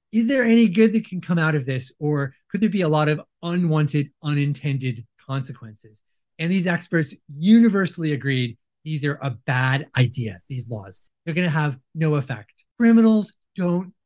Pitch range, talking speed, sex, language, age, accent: 135-185 Hz, 170 wpm, male, English, 30-49, American